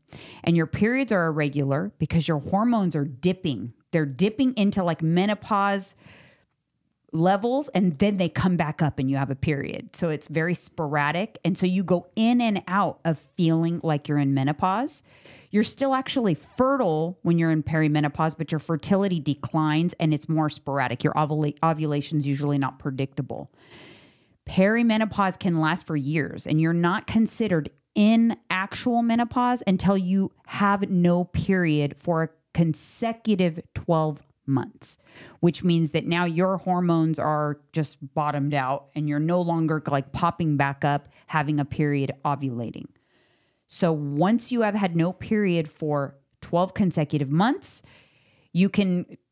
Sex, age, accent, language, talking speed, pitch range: female, 30-49, American, English, 150 wpm, 150-190 Hz